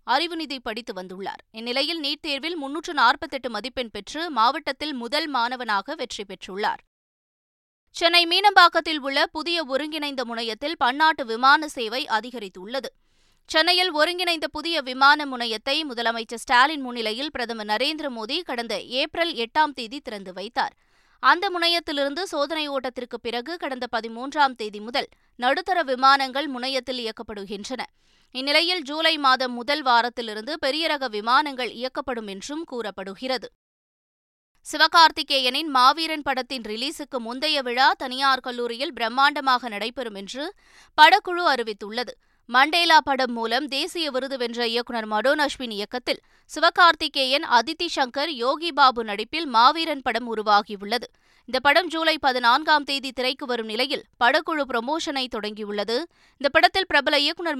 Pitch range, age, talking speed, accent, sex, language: 240-310 Hz, 20-39, 115 wpm, native, female, Tamil